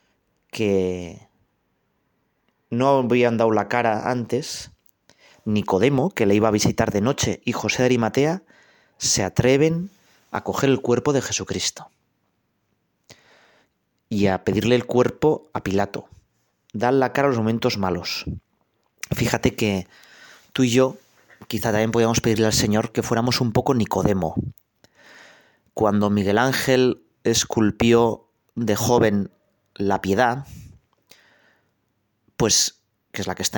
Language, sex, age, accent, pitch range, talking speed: Spanish, male, 30-49, Spanish, 105-130 Hz, 125 wpm